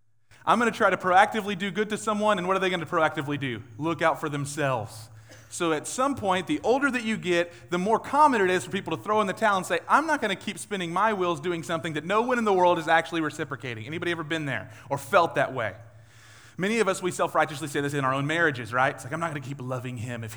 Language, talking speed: English, 275 wpm